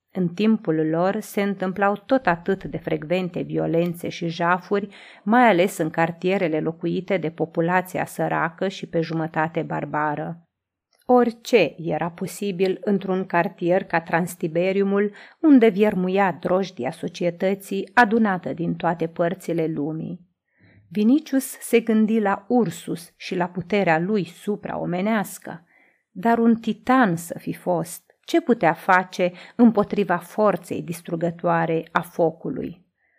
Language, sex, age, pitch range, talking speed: Romanian, female, 30-49, 170-215 Hz, 115 wpm